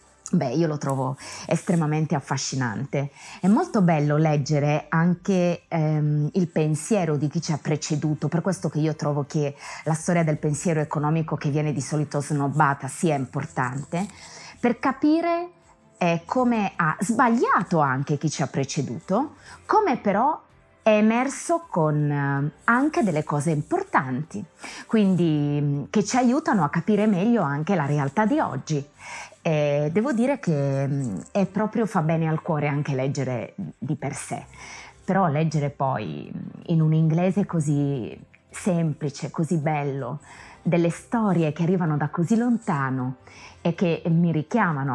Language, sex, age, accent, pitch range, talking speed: Italian, female, 20-39, native, 145-185 Hz, 140 wpm